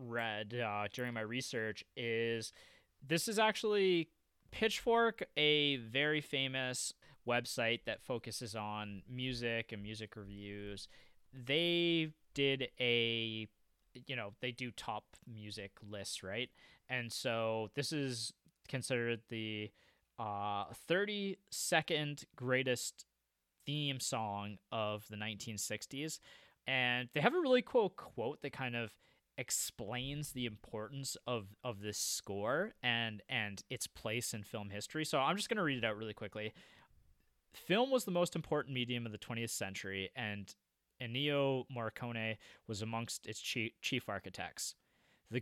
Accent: American